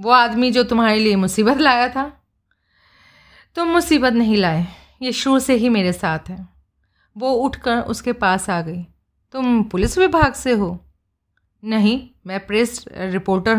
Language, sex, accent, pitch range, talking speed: Hindi, female, native, 190-275 Hz, 150 wpm